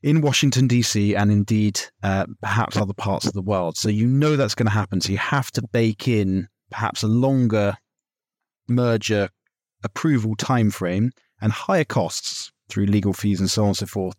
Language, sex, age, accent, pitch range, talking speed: English, male, 30-49, British, 100-120 Hz, 180 wpm